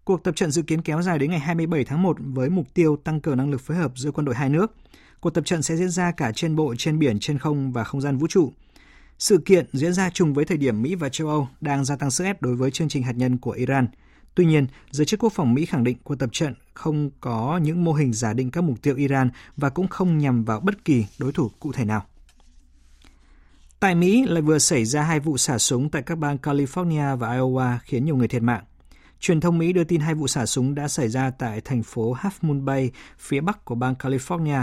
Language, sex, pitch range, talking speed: Vietnamese, male, 125-160 Hz, 255 wpm